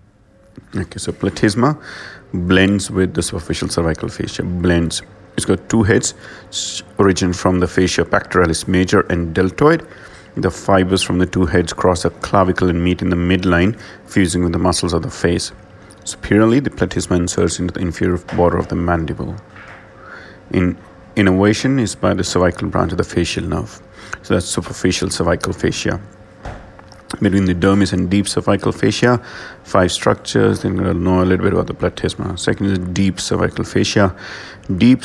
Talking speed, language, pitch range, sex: 165 wpm, English, 90-100 Hz, male